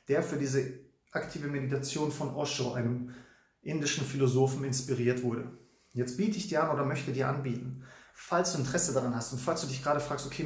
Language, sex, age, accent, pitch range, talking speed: English, male, 30-49, German, 130-155 Hz, 190 wpm